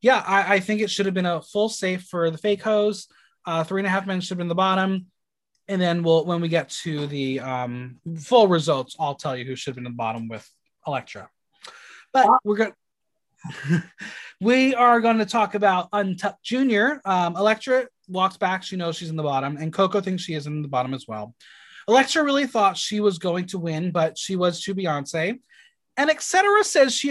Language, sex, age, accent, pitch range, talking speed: English, male, 20-39, American, 165-225 Hz, 215 wpm